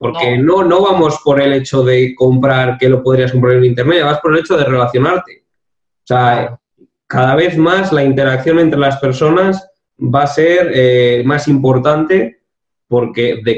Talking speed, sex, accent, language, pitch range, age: 175 wpm, male, Spanish, Spanish, 125-160 Hz, 20-39